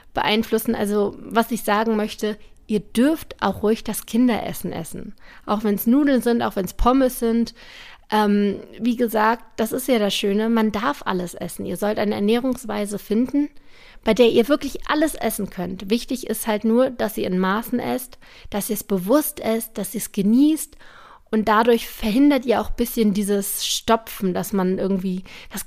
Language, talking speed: German, 180 wpm